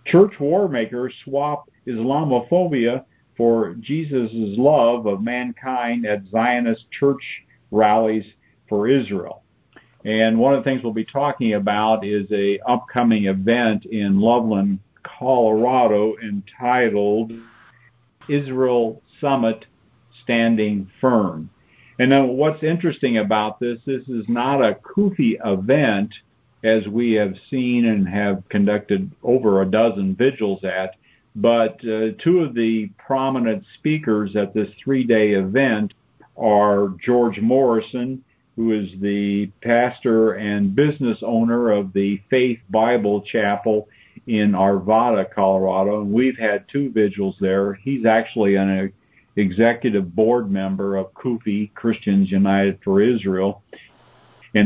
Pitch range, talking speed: 105-125 Hz, 120 wpm